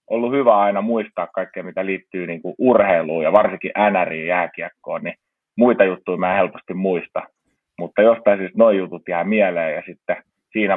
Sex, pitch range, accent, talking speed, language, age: male, 90-110 Hz, native, 160 wpm, Finnish, 30-49